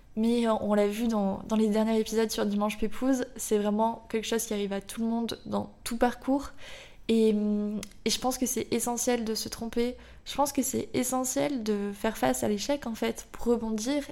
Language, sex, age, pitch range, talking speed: French, female, 20-39, 210-240 Hz, 210 wpm